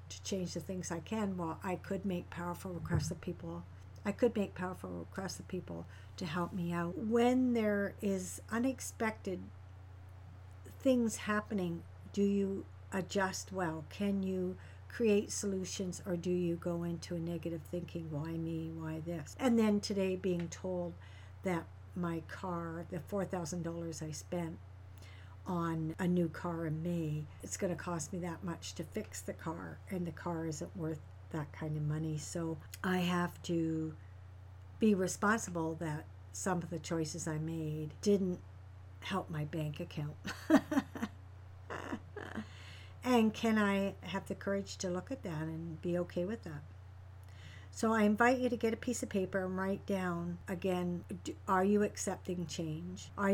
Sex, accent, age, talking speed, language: female, American, 60-79, 160 wpm, English